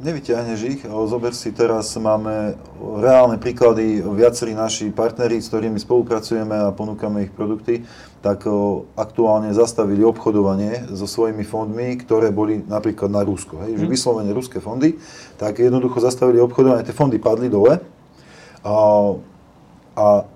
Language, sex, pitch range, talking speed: Slovak, male, 105-125 Hz, 135 wpm